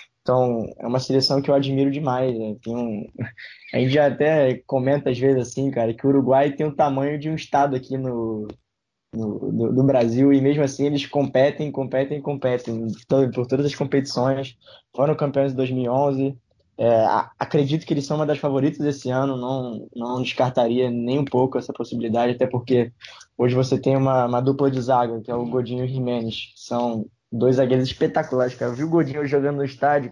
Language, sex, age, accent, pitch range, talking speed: Portuguese, male, 10-29, Brazilian, 120-140 Hz, 195 wpm